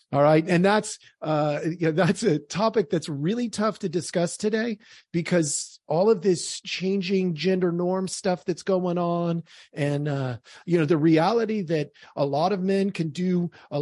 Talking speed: 180 wpm